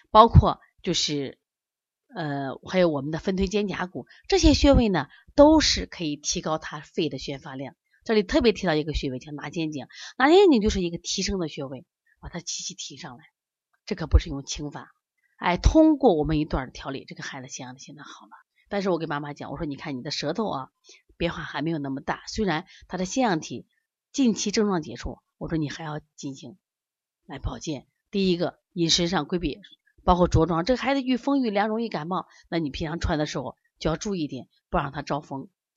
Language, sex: Chinese, female